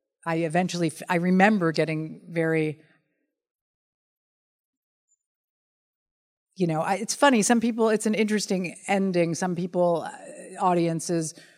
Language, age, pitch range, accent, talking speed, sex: English, 50-69, 155-185 Hz, American, 100 wpm, female